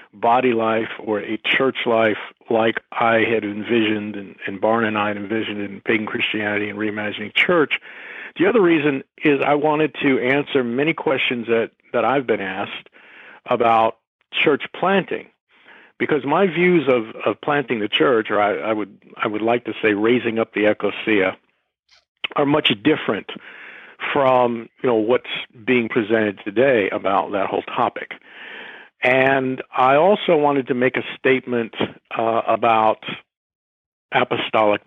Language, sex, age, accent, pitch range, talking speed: English, male, 50-69, American, 105-135 Hz, 150 wpm